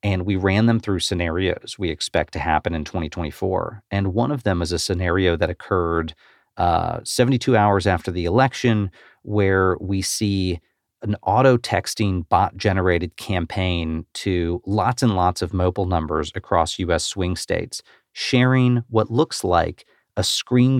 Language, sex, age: English, male, 40-59